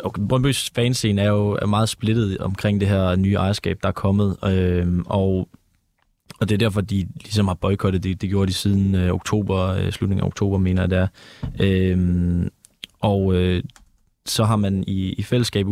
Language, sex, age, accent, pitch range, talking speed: Danish, male, 20-39, native, 90-100 Hz, 185 wpm